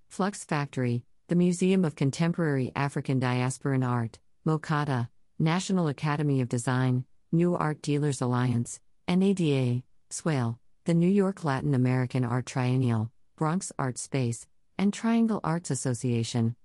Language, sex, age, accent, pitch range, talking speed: English, female, 50-69, American, 130-155 Hz, 125 wpm